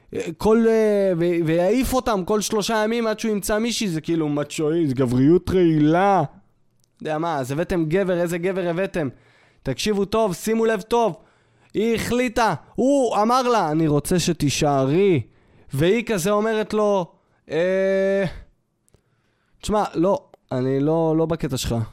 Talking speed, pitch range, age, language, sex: 135 wpm, 155-215 Hz, 20-39, Hebrew, male